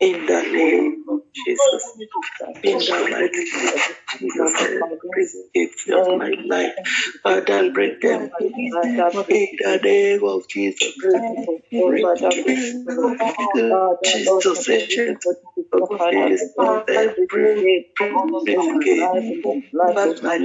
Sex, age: male, 60-79